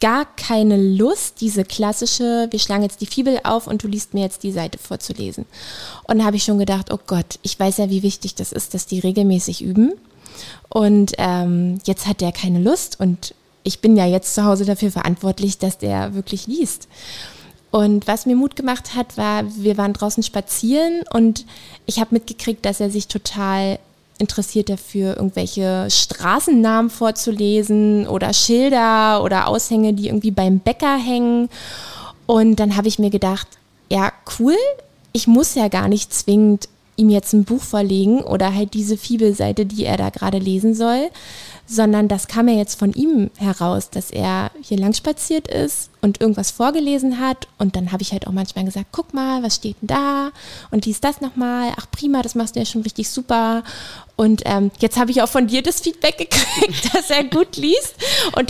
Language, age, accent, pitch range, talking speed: German, 20-39, German, 195-235 Hz, 185 wpm